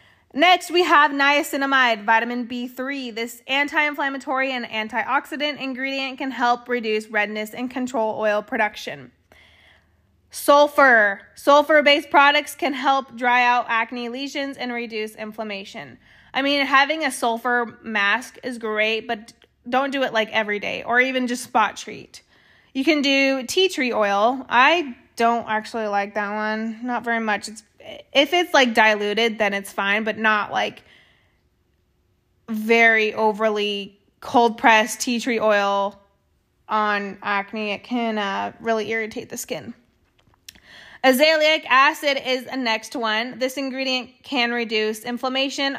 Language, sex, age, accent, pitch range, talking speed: English, female, 20-39, American, 215-270 Hz, 140 wpm